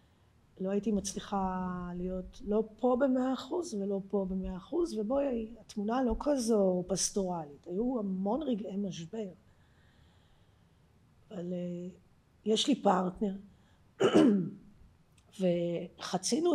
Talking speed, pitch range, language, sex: 95 wpm, 175-220 Hz, Hebrew, female